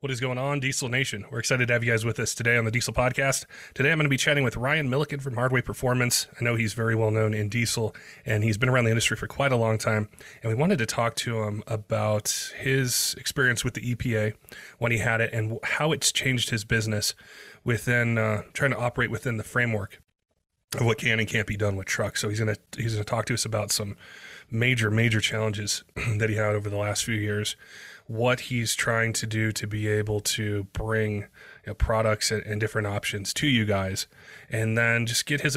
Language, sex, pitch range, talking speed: English, male, 110-125 Hz, 225 wpm